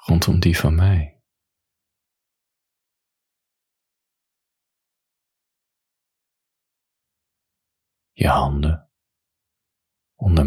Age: 40-59